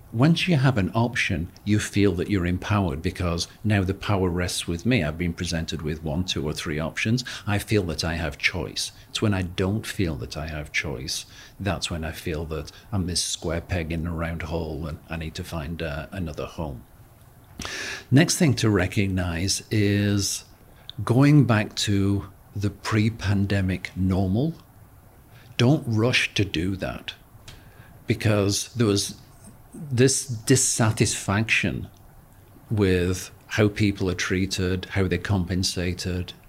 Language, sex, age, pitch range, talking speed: English, male, 50-69, 90-115 Hz, 150 wpm